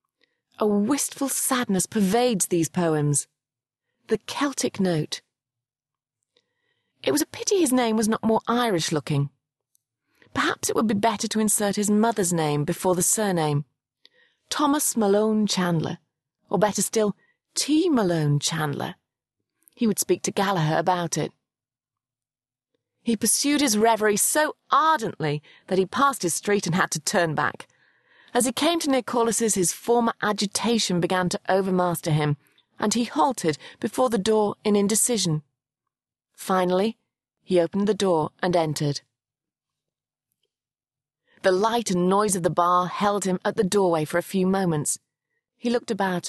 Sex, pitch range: female, 165-230 Hz